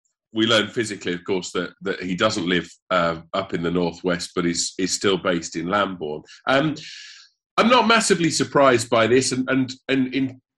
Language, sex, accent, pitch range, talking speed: English, male, British, 95-125 Hz, 185 wpm